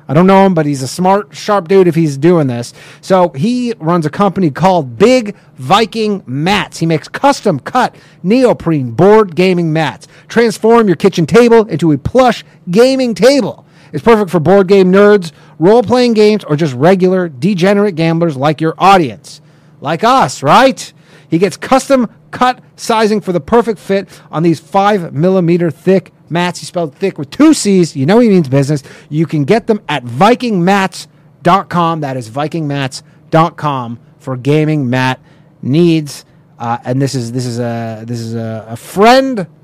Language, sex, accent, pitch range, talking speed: English, male, American, 155-210 Hz, 165 wpm